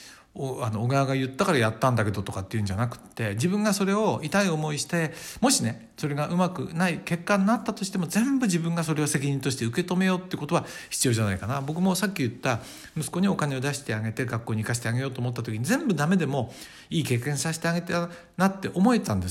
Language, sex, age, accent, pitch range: Japanese, male, 60-79, native, 110-165 Hz